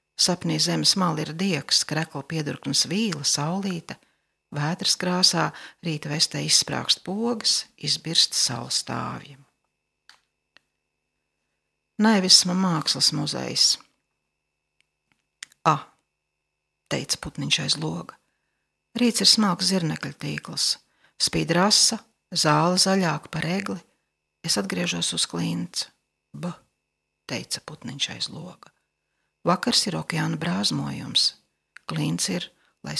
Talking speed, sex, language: 95 wpm, female, English